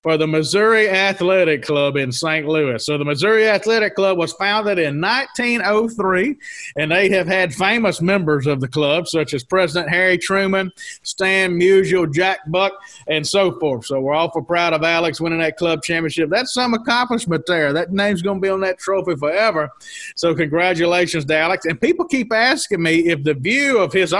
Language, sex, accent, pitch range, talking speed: English, male, American, 155-200 Hz, 185 wpm